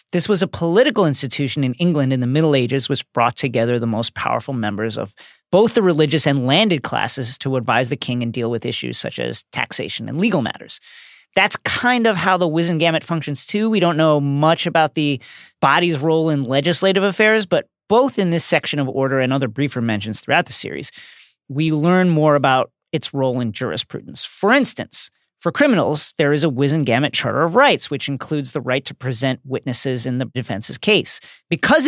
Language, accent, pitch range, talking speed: English, American, 130-165 Hz, 195 wpm